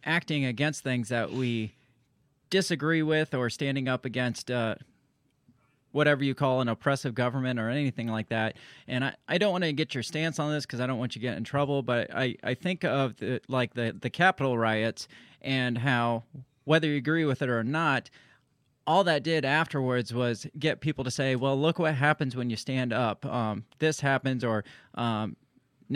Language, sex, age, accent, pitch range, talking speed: English, male, 30-49, American, 120-150 Hz, 195 wpm